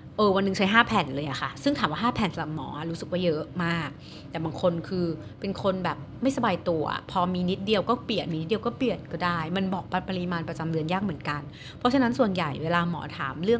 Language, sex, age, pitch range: Thai, female, 30-49, 155-210 Hz